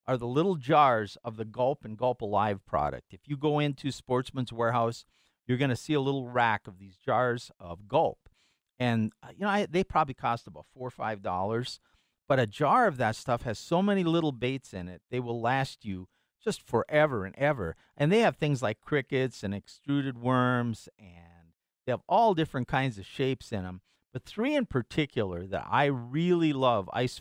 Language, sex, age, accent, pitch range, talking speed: English, male, 50-69, American, 110-150 Hz, 200 wpm